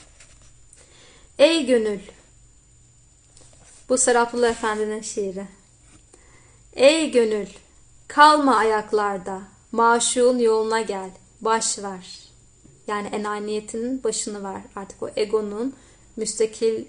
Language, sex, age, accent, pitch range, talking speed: Turkish, female, 30-49, native, 205-250 Hz, 80 wpm